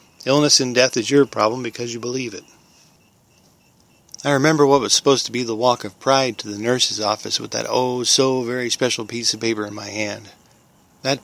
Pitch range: 115-135 Hz